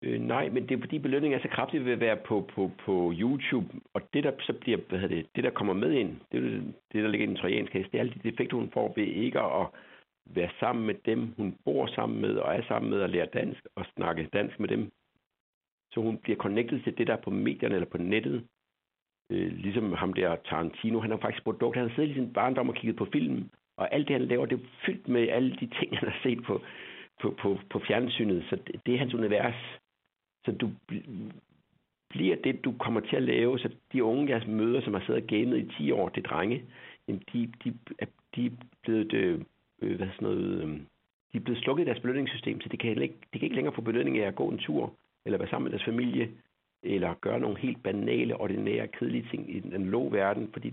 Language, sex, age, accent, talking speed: Danish, male, 60-79, native, 225 wpm